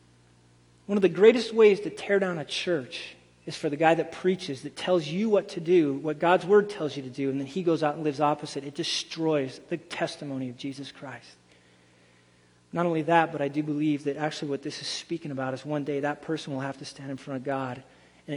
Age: 40-59